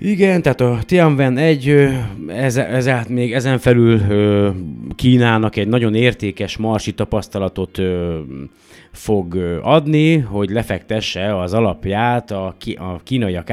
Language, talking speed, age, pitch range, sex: Hungarian, 130 wpm, 30-49, 90-115 Hz, male